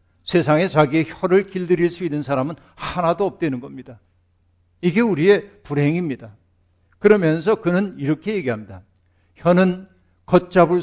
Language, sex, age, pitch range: Korean, male, 60-79, 115-180 Hz